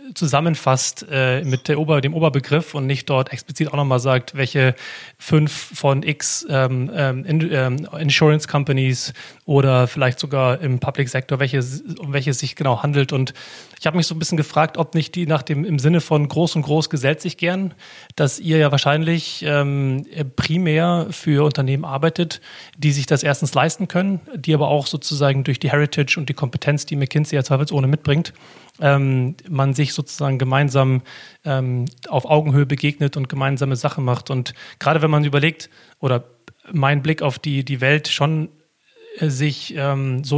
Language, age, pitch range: German, 30-49, 135-155 Hz